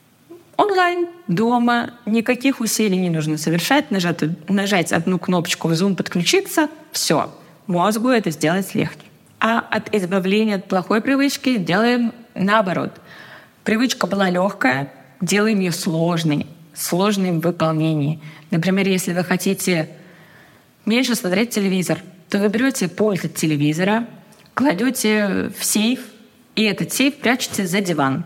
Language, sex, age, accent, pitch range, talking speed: Russian, female, 20-39, native, 170-220 Hz, 120 wpm